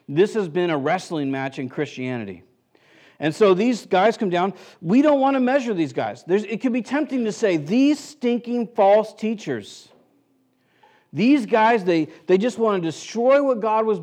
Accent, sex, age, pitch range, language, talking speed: American, male, 50-69, 160-230 Hz, English, 185 wpm